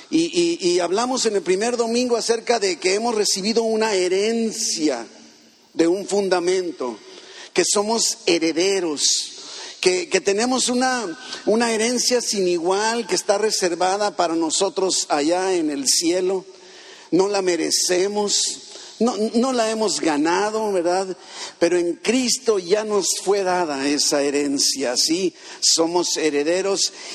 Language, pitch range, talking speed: Spanish, 185-265 Hz, 130 wpm